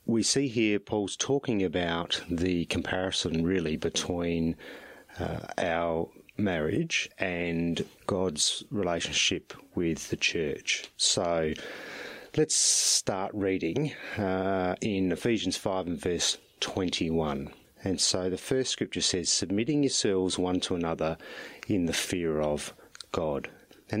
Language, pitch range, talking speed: English, 85-105 Hz, 120 wpm